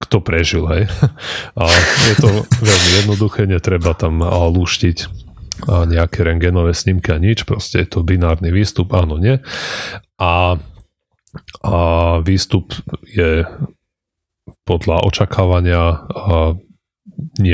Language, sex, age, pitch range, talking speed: Slovak, male, 30-49, 85-100 Hz, 105 wpm